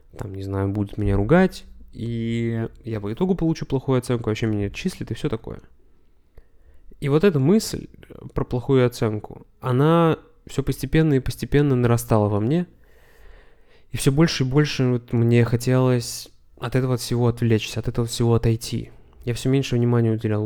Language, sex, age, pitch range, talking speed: Russian, male, 20-39, 110-140 Hz, 165 wpm